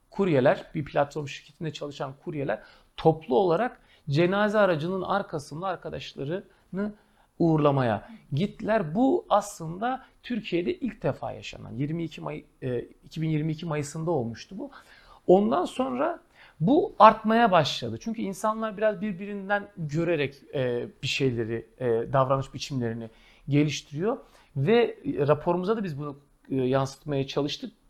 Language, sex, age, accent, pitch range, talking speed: Turkish, male, 40-59, native, 145-210 Hz, 105 wpm